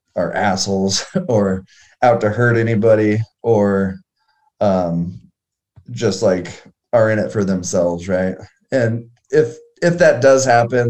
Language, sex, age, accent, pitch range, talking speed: English, male, 20-39, American, 95-125 Hz, 125 wpm